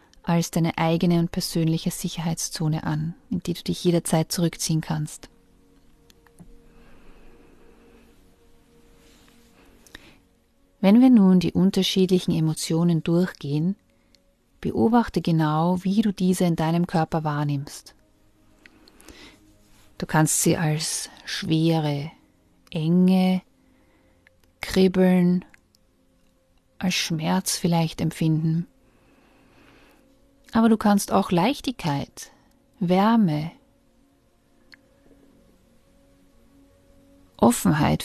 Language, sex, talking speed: German, female, 75 wpm